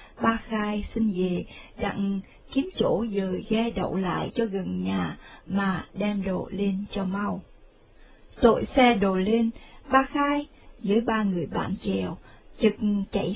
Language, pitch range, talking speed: Vietnamese, 195-250 Hz, 150 wpm